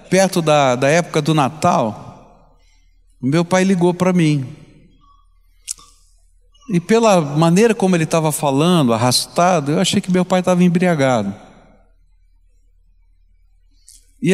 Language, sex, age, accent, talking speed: Portuguese, male, 60-79, Brazilian, 115 wpm